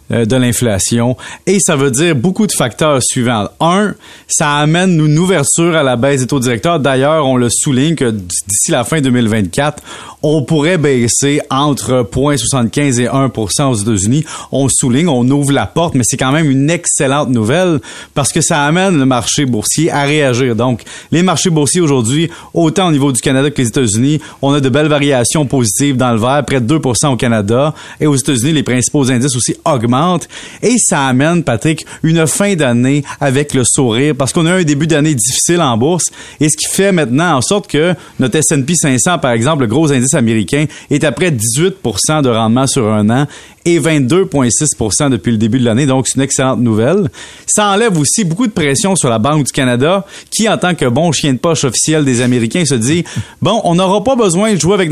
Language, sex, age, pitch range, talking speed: French, male, 30-49, 130-165 Hz, 205 wpm